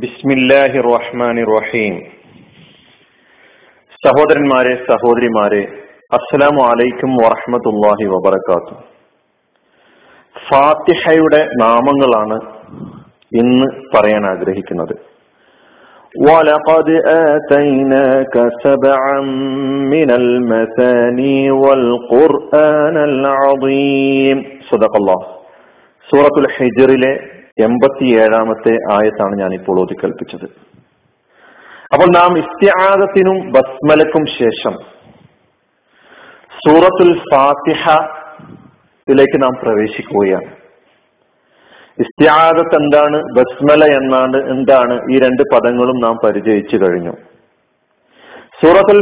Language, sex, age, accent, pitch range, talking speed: Malayalam, male, 50-69, native, 120-150 Hz, 45 wpm